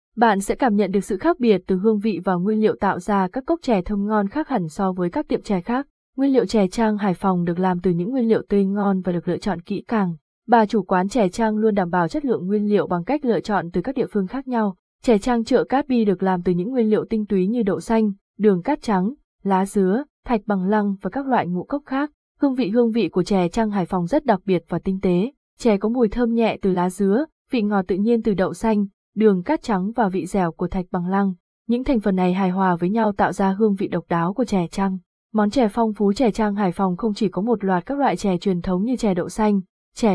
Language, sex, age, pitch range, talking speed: Vietnamese, female, 20-39, 185-230 Hz, 270 wpm